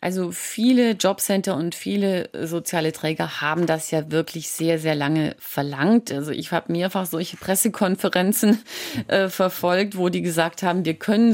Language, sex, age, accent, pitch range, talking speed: German, female, 30-49, German, 160-195 Hz, 155 wpm